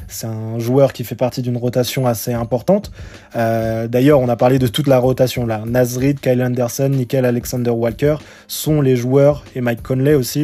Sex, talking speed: male, 190 wpm